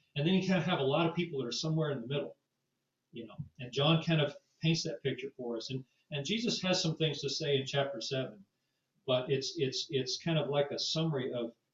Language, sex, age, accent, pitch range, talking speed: English, male, 40-59, American, 125-155 Hz, 245 wpm